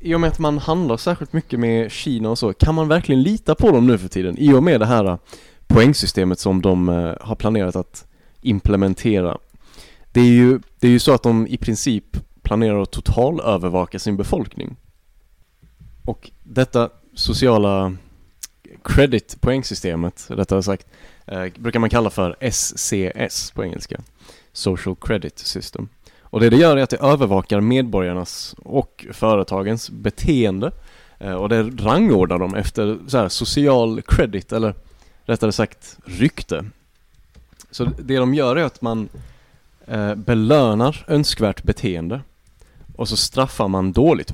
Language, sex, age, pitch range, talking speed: Swedish, male, 20-39, 95-125 Hz, 140 wpm